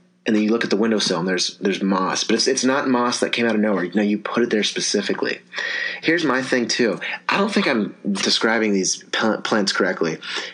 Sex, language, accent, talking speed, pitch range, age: male, English, American, 220 wpm, 95-115 Hz, 30-49